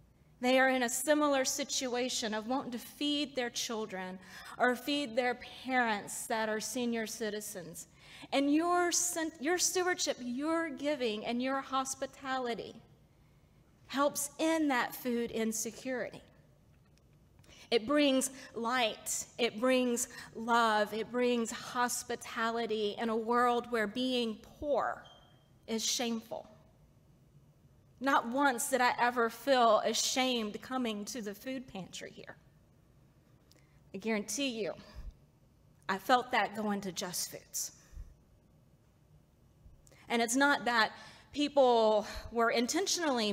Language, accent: English, American